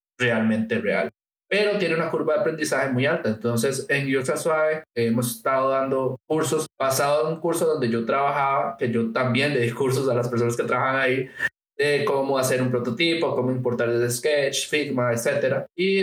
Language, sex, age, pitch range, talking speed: Spanish, male, 20-39, 125-165 Hz, 185 wpm